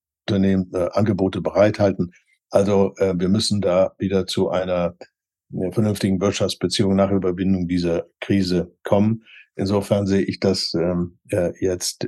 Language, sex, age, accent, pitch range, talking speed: German, male, 60-79, German, 90-100 Hz, 135 wpm